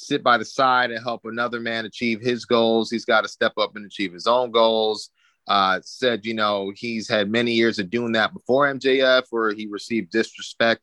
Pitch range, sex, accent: 105-125 Hz, male, American